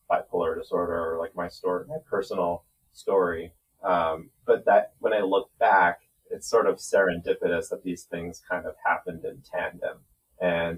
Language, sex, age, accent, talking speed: English, male, 30-49, American, 160 wpm